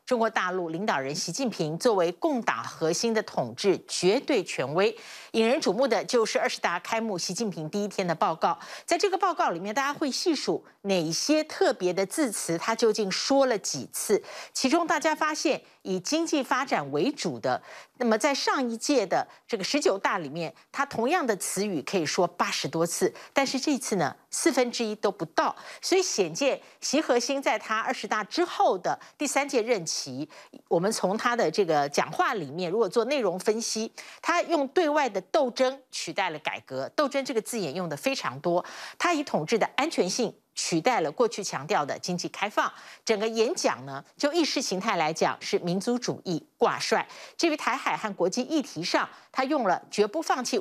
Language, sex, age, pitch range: Chinese, female, 50-69, 190-295 Hz